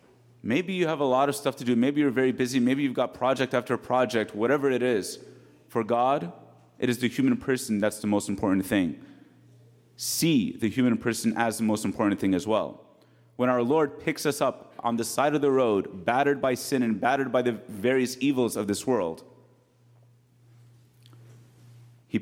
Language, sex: English, male